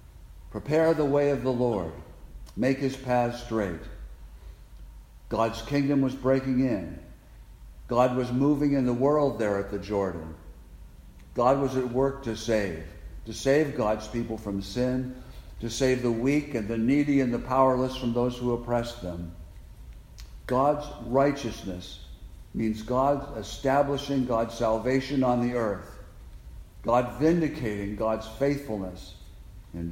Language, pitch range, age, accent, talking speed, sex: English, 90-130 Hz, 60-79, American, 135 wpm, male